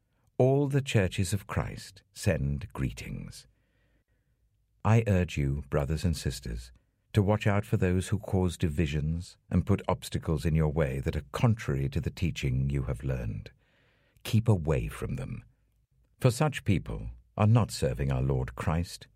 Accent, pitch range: British, 80-115 Hz